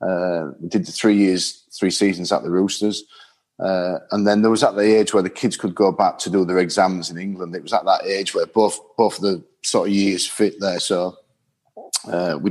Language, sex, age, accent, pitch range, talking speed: English, male, 40-59, British, 90-100 Hz, 230 wpm